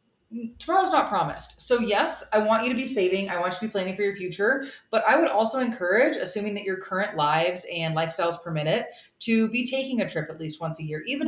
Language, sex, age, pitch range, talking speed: English, female, 20-39, 180-235 Hz, 240 wpm